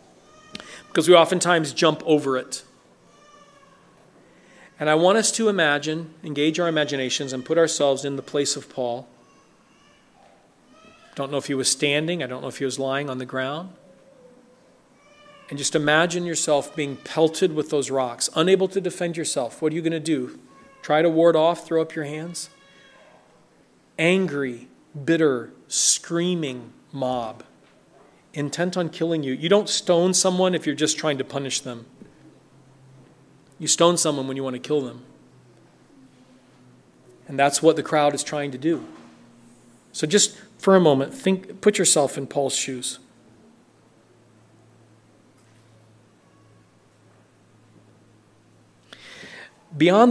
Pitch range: 130-170 Hz